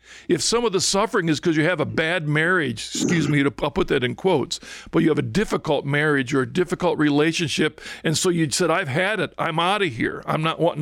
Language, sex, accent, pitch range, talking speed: English, male, American, 145-180 Hz, 240 wpm